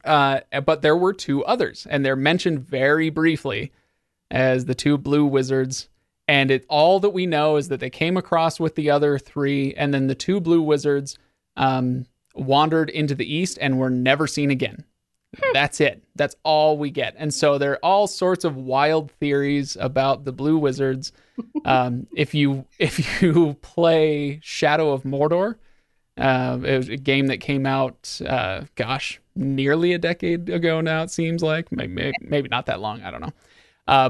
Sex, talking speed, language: male, 180 wpm, English